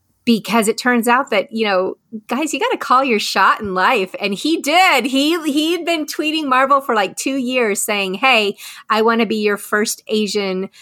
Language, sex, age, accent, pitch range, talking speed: English, female, 30-49, American, 195-245 Hz, 210 wpm